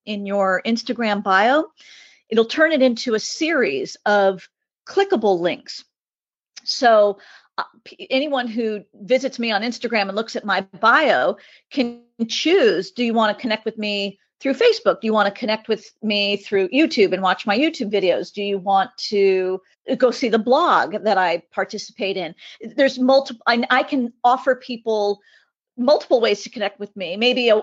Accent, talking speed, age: American, 165 wpm, 40-59